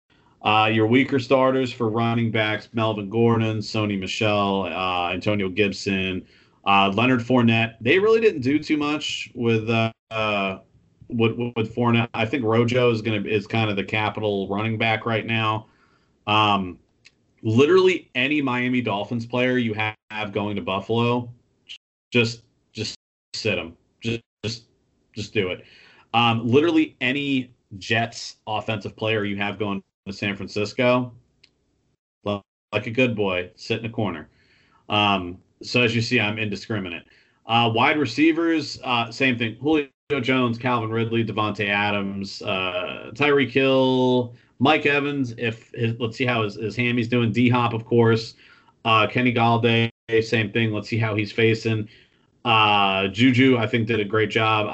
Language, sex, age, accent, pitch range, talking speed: English, male, 30-49, American, 105-120 Hz, 150 wpm